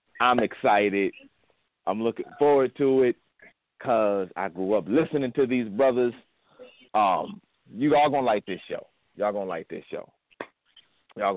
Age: 40-59